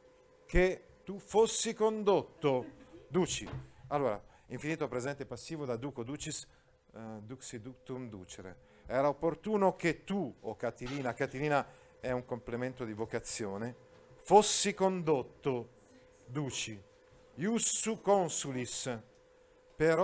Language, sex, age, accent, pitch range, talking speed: Italian, male, 40-59, native, 115-160 Hz, 105 wpm